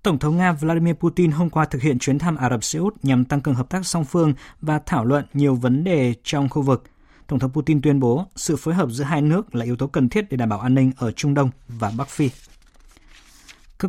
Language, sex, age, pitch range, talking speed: Vietnamese, male, 20-39, 125-155 Hz, 255 wpm